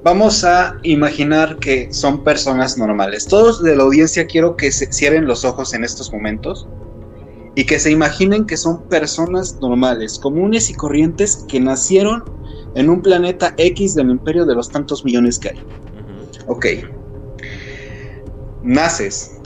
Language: Spanish